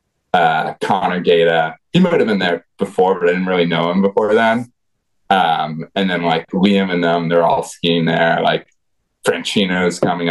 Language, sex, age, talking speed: English, male, 20-39, 180 wpm